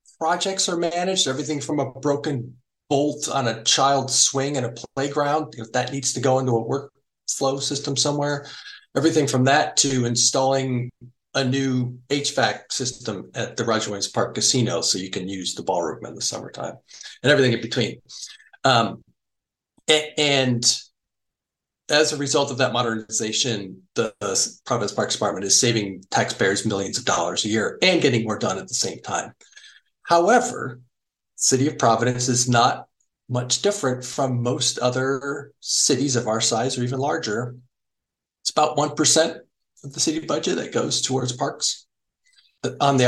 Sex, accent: male, American